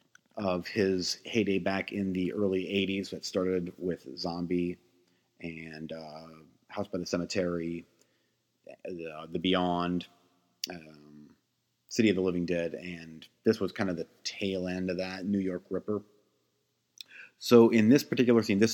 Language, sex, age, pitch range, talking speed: English, male, 30-49, 90-100 Hz, 145 wpm